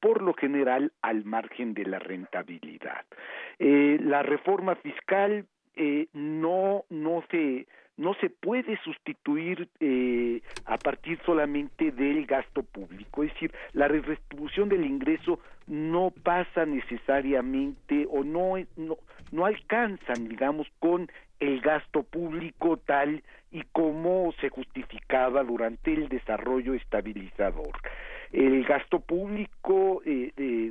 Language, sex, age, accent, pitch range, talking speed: Spanish, male, 50-69, Mexican, 125-165 Hz, 115 wpm